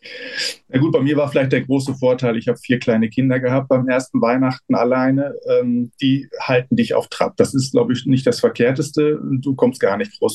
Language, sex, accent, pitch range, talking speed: German, male, German, 120-150 Hz, 215 wpm